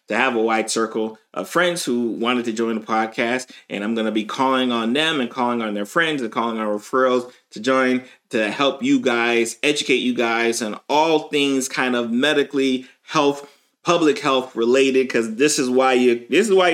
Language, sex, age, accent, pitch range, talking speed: English, male, 30-49, American, 120-155 Hz, 205 wpm